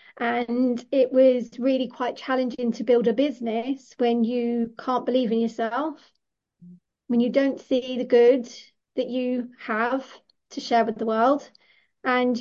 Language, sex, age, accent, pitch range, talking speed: English, female, 30-49, British, 225-255 Hz, 150 wpm